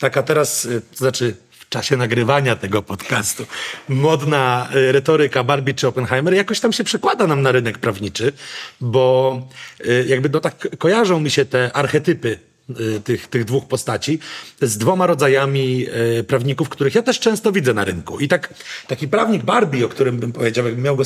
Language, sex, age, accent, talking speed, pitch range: Polish, male, 40-59, native, 160 wpm, 125-155 Hz